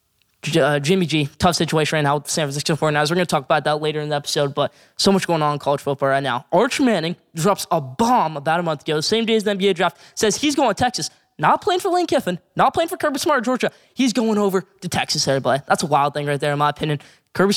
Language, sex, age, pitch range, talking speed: English, male, 10-29, 150-205 Hz, 265 wpm